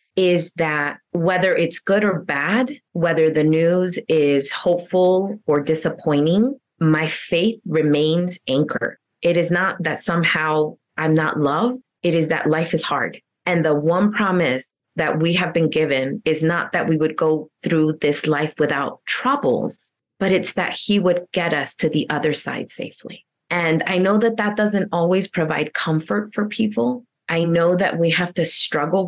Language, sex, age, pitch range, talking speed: English, female, 30-49, 160-200 Hz, 170 wpm